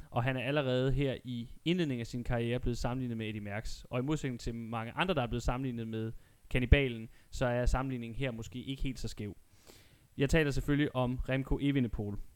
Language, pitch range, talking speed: Danish, 115-135 Hz, 205 wpm